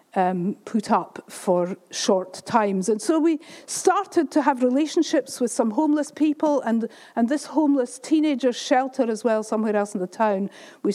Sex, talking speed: female, 170 wpm